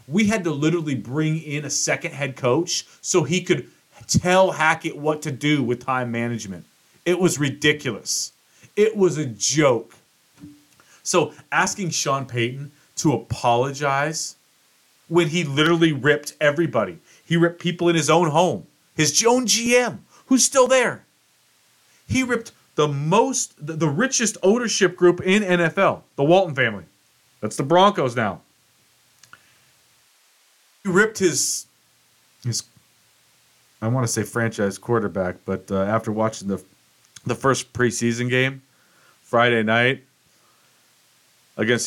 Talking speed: 130 wpm